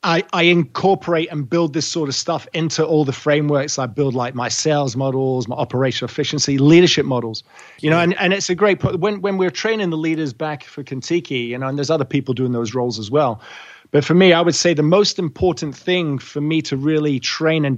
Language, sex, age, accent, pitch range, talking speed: English, male, 30-49, British, 135-170 Hz, 230 wpm